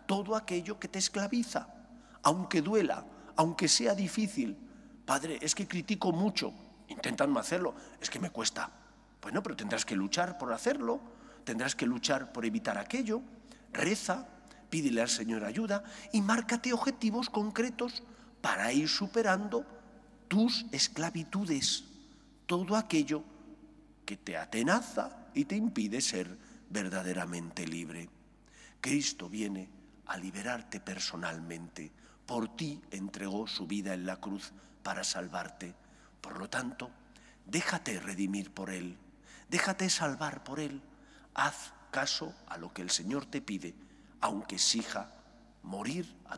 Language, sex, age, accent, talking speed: English, male, 40-59, Spanish, 130 wpm